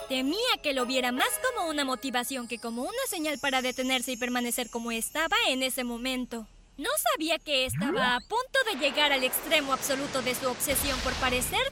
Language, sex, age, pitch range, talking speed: Spanish, female, 20-39, 250-305 Hz, 190 wpm